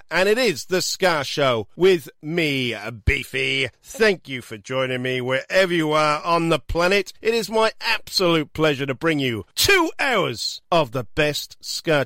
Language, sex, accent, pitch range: English, male, British, 115-170 Hz